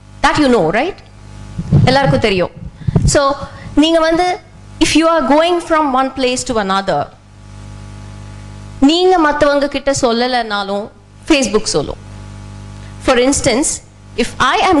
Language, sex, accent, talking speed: Tamil, female, native, 115 wpm